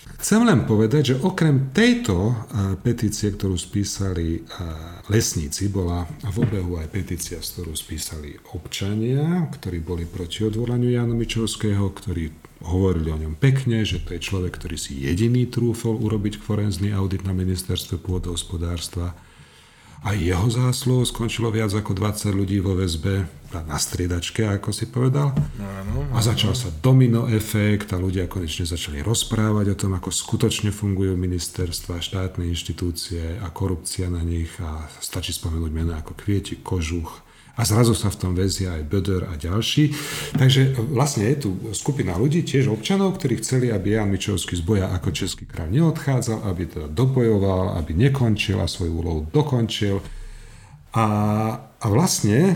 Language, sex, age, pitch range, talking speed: Slovak, male, 40-59, 90-120 Hz, 150 wpm